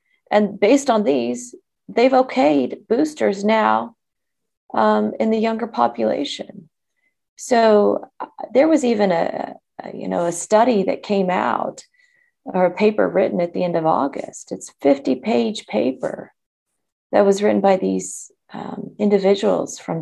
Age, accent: 40-59, American